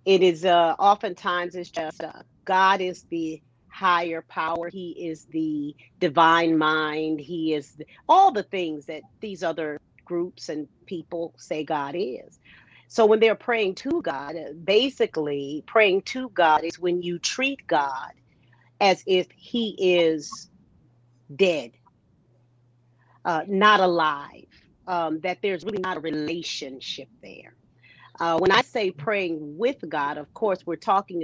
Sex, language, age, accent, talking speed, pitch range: female, English, 40-59, American, 140 wpm, 155-195 Hz